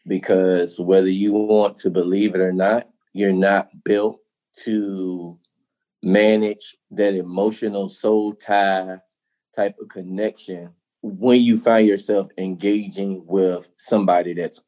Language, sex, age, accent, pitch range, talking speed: English, male, 20-39, American, 95-110 Hz, 120 wpm